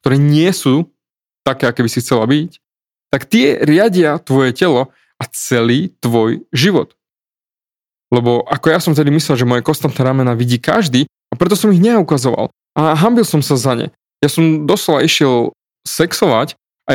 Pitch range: 125-160 Hz